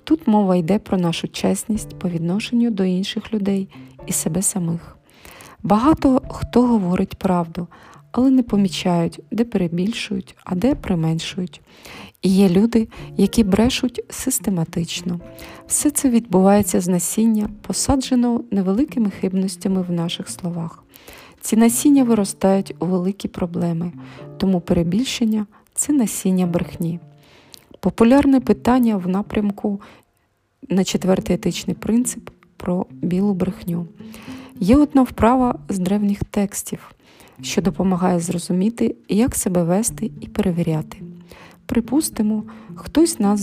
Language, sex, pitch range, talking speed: Ukrainian, female, 180-225 Hz, 115 wpm